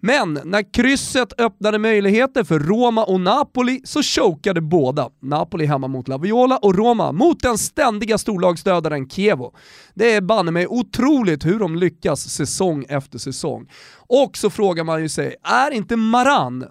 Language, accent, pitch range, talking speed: Swedish, native, 155-235 Hz, 150 wpm